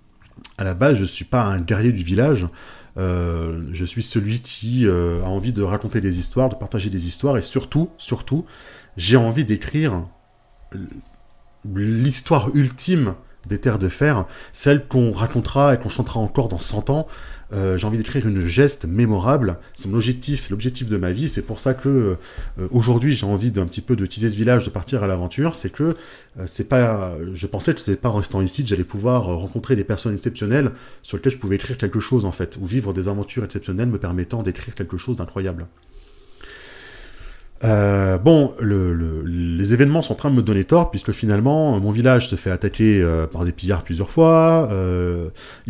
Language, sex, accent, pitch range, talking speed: French, male, French, 95-130 Hz, 195 wpm